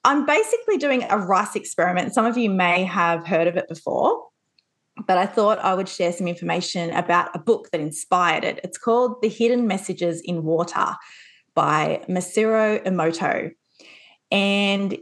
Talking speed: 160 wpm